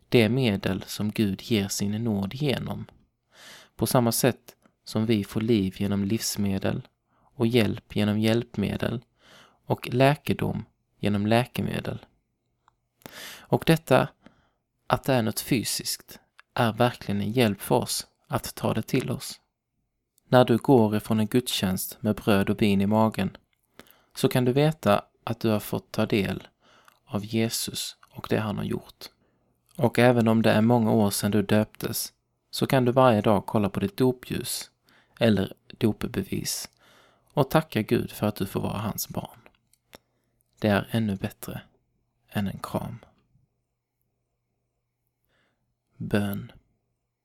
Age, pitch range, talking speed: 20-39, 100-120 Hz, 140 wpm